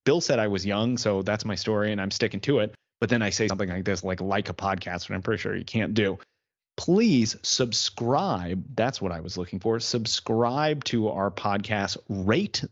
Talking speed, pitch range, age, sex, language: 210 wpm, 95-120 Hz, 30-49, male, English